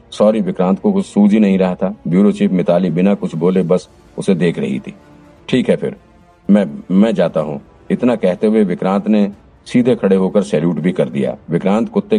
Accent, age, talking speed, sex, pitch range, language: native, 50-69, 190 wpm, male, 90-115 Hz, Hindi